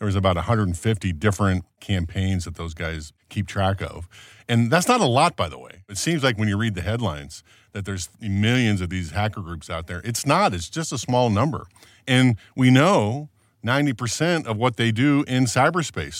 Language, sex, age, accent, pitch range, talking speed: English, male, 50-69, American, 95-120 Hz, 200 wpm